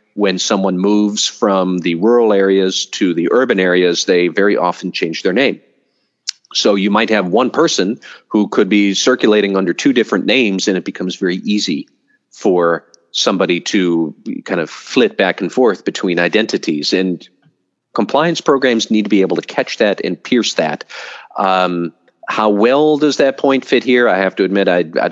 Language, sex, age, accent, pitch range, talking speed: English, male, 40-59, American, 90-105 Hz, 175 wpm